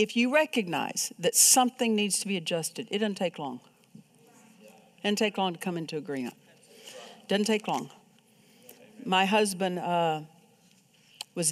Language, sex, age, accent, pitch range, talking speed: English, female, 60-79, American, 185-230 Hz, 150 wpm